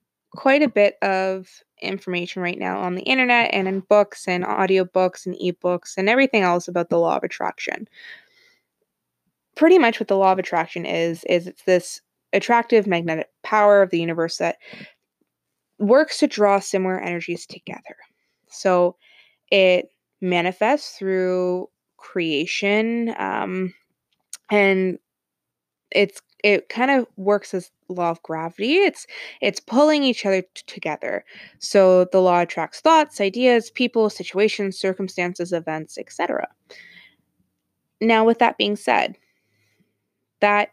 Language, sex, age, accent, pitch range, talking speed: English, female, 20-39, American, 180-225 Hz, 130 wpm